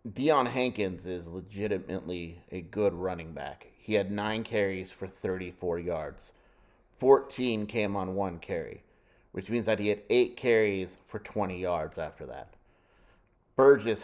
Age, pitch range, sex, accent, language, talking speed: 30-49, 90-110 Hz, male, American, English, 140 wpm